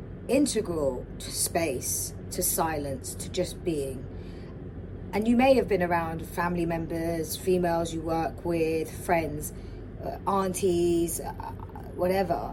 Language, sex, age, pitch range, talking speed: English, female, 30-49, 150-205 Hz, 120 wpm